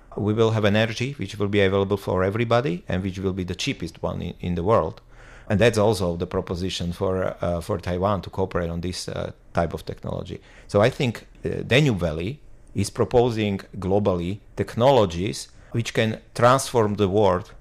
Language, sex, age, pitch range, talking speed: English, male, 40-59, 90-110 Hz, 175 wpm